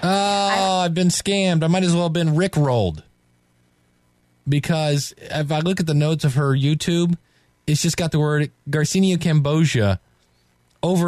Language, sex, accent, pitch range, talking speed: English, male, American, 110-155 Hz, 155 wpm